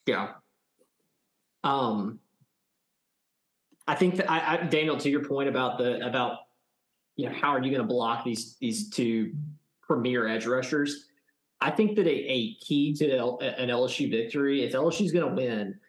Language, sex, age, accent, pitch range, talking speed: English, male, 20-39, American, 125-150 Hz, 165 wpm